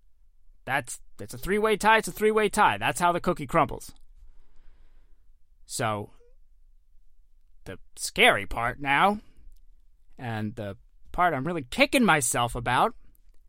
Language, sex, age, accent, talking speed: English, male, 20-39, American, 120 wpm